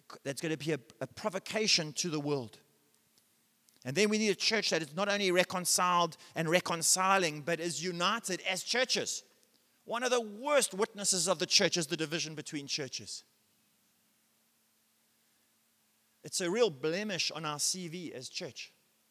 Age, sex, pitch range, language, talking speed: 30-49, male, 160-210 Hz, English, 155 wpm